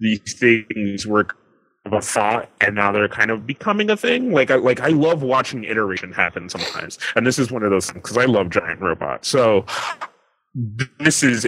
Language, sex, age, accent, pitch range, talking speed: English, male, 30-49, American, 100-130 Hz, 200 wpm